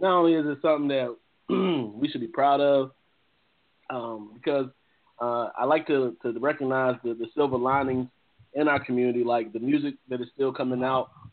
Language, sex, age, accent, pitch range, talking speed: English, male, 20-39, American, 120-140 Hz, 180 wpm